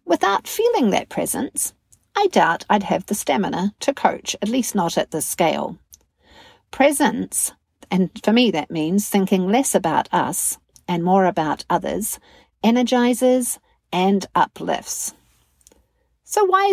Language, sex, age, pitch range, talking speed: English, female, 50-69, 185-275 Hz, 135 wpm